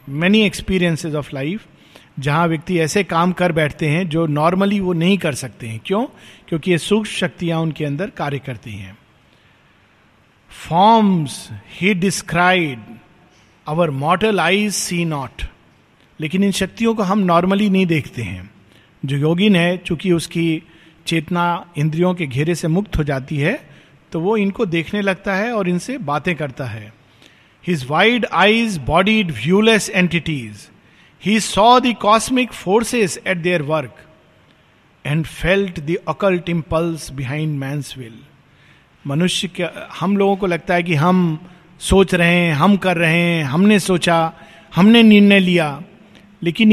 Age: 50-69